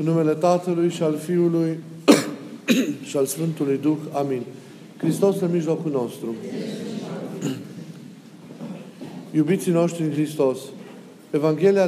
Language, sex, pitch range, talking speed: Romanian, male, 155-185 Hz, 100 wpm